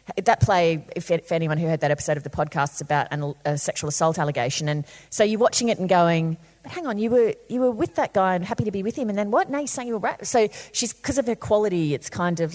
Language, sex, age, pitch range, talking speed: English, female, 30-49, 145-185 Hz, 295 wpm